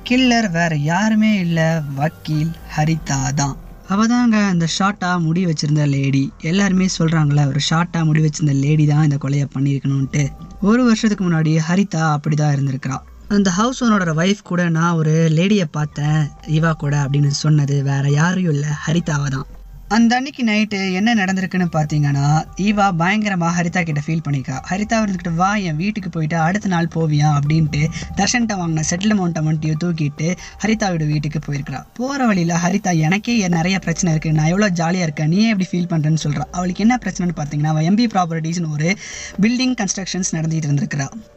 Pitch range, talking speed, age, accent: 155-190 Hz, 155 wpm, 20-39, native